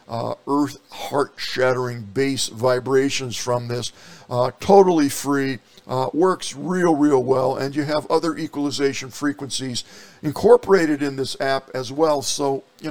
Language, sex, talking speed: English, male, 135 wpm